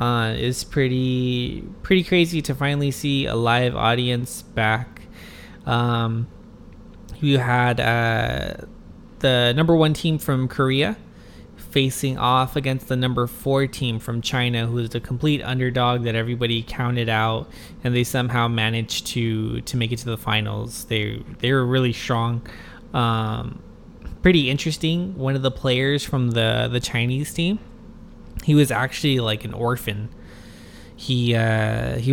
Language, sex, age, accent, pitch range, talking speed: English, male, 20-39, American, 115-130 Hz, 145 wpm